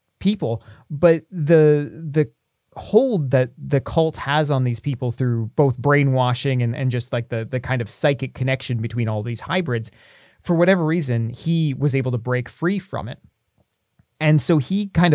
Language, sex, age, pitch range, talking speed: English, male, 30-49, 125-155 Hz, 175 wpm